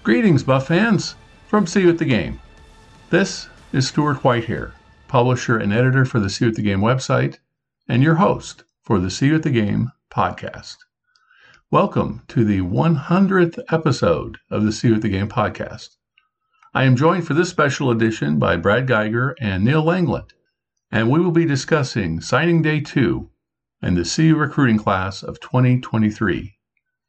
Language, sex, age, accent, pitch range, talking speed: English, male, 50-69, American, 115-165 Hz, 160 wpm